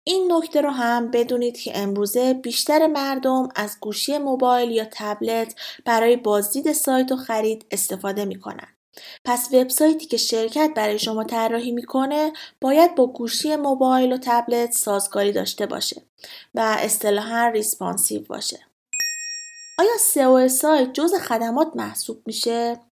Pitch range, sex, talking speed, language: 225-310 Hz, female, 125 wpm, Persian